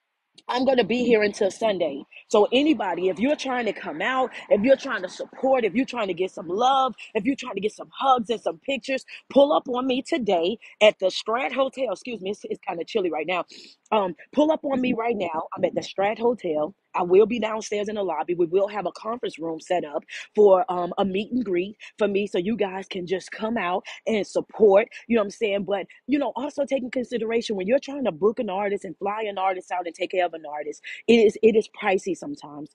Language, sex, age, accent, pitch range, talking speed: English, female, 30-49, American, 190-250 Hz, 245 wpm